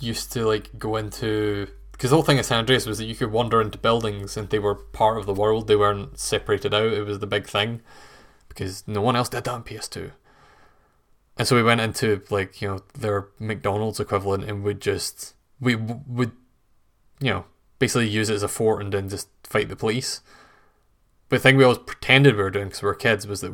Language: English